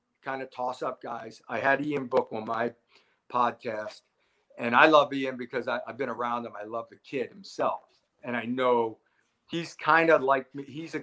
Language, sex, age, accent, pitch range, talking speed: English, male, 50-69, American, 120-155 Hz, 195 wpm